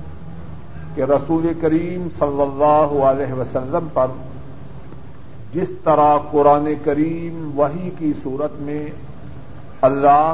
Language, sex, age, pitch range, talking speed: Urdu, male, 50-69, 140-165 Hz, 100 wpm